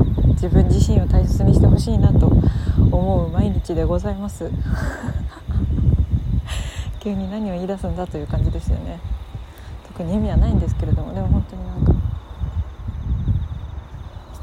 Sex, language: female, Japanese